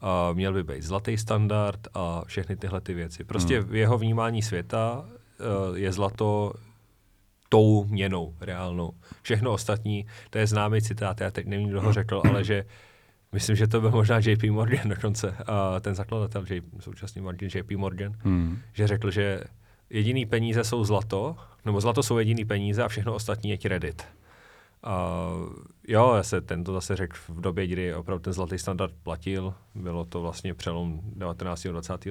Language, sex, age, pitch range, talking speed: Czech, male, 30-49, 95-110 Hz, 170 wpm